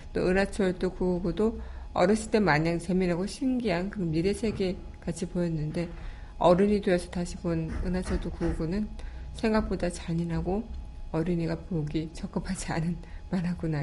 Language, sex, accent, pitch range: Korean, female, native, 160-195 Hz